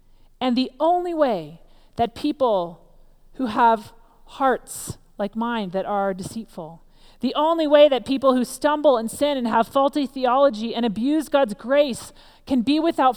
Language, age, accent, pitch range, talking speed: English, 40-59, American, 210-285 Hz, 155 wpm